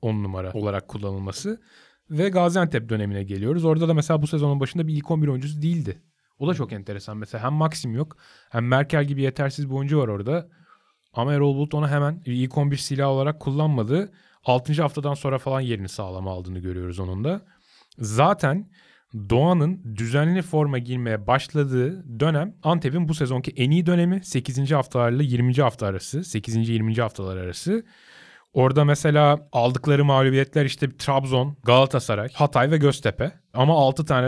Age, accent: 30-49, native